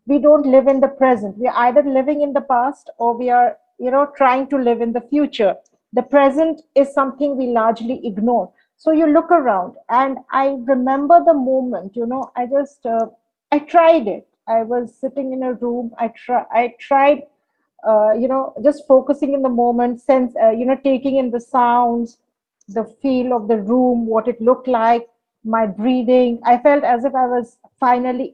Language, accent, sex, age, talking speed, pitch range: English, Indian, female, 50-69, 195 wpm, 240-285 Hz